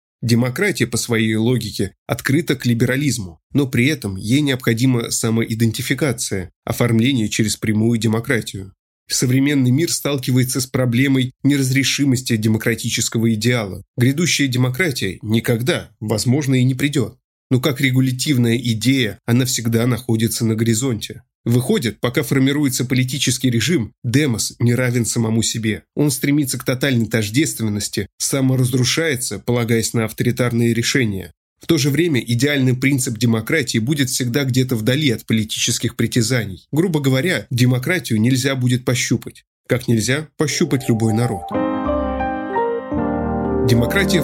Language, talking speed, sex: Russian, 120 wpm, male